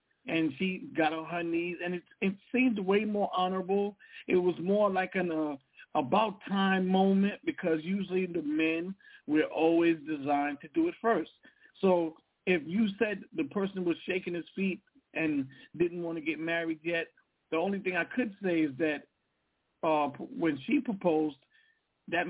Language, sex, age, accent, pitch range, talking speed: English, male, 50-69, American, 170-205 Hz, 165 wpm